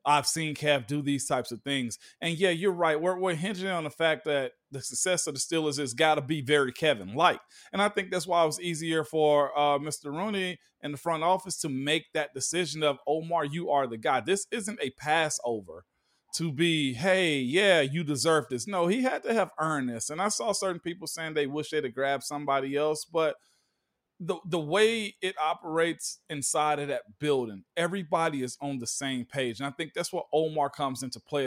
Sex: male